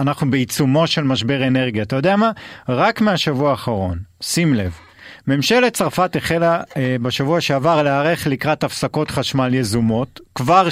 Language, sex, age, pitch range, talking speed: Hebrew, male, 40-59, 130-170 Hz, 140 wpm